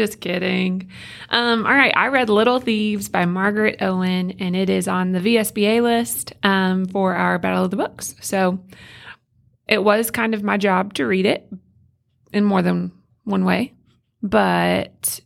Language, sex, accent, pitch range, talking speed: English, female, American, 180-210 Hz, 165 wpm